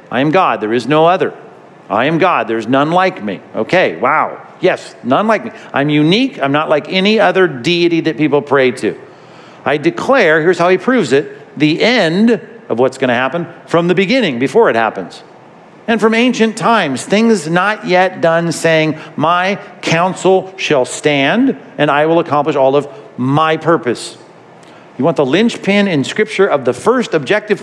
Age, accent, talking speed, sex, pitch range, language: 50-69, American, 180 wpm, male, 140-190 Hz, English